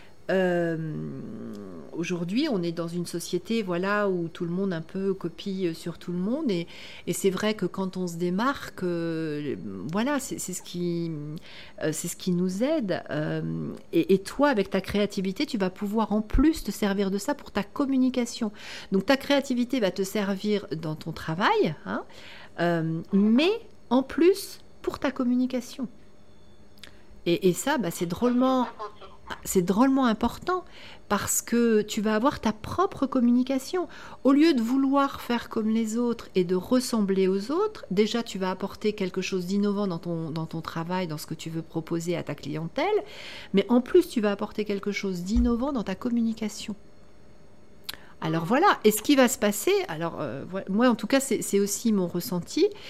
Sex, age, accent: female, 50-69, French